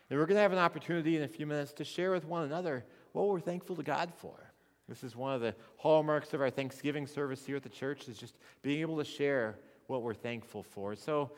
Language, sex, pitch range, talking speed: English, male, 110-155 Hz, 250 wpm